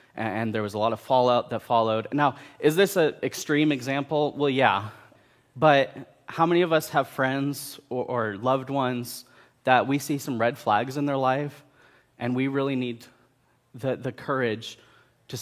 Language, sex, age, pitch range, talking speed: English, male, 20-39, 115-140 Hz, 175 wpm